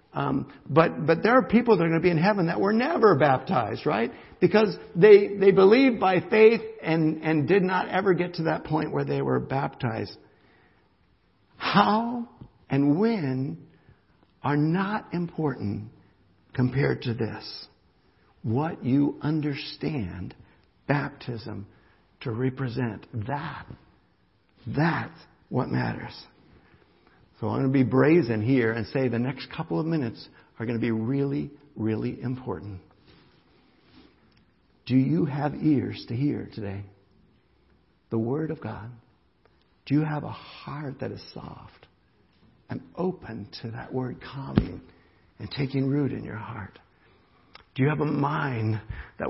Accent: American